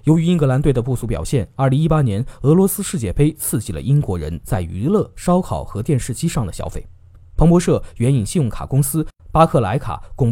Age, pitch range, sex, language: 20-39, 100-150 Hz, male, Chinese